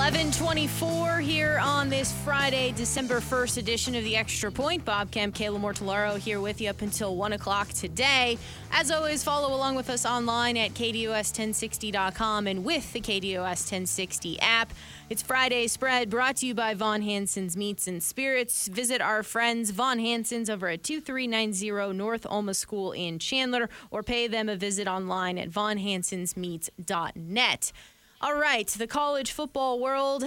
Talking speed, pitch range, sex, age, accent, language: 160 wpm, 205-250 Hz, female, 20-39, American, English